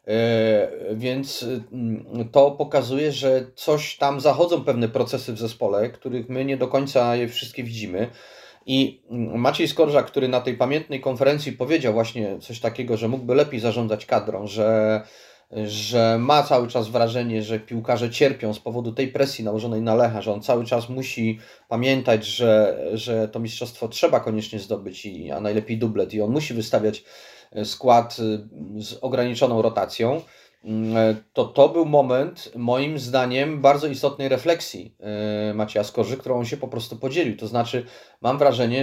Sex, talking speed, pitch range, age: male, 155 wpm, 110-135 Hz, 30-49